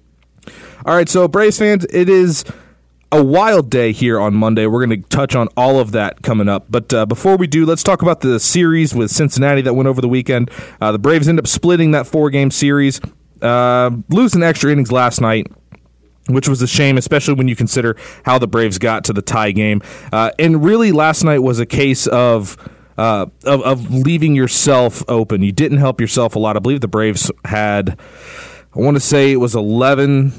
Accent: American